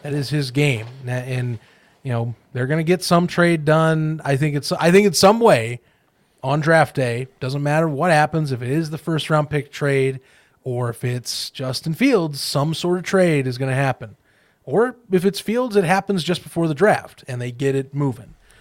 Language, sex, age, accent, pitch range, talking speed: English, male, 30-49, American, 125-155 Hz, 215 wpm